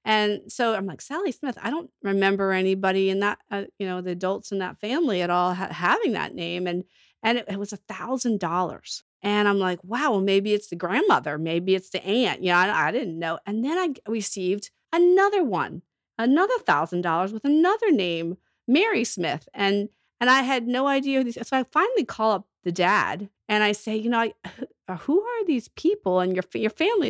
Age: 40-59